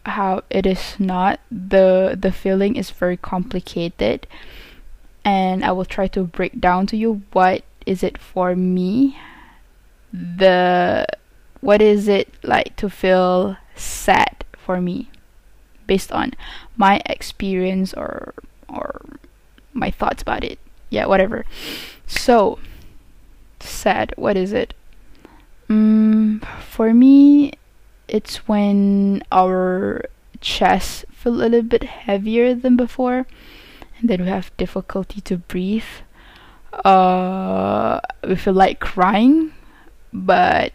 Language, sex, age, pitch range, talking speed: English, female, 10-29, 185-225 Hz, 115 wpm